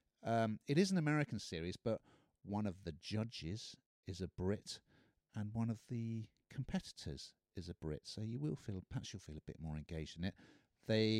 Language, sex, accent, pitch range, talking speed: English, male, British, 85-115 Hz, 195 wpm